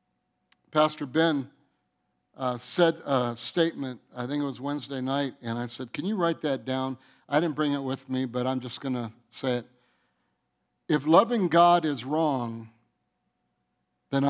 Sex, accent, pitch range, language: male, American, 135-190 Hz, English